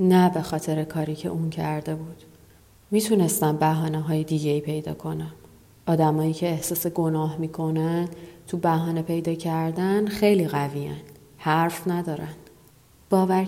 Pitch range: 155-200 Hz